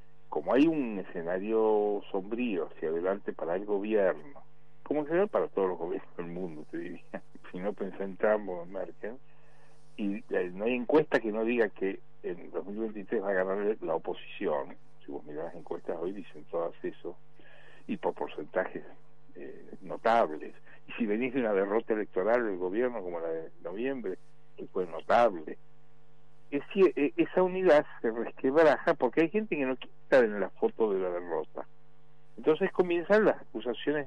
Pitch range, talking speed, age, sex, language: 105-160 Hz, 165 wpm, 60-79, male, Spanish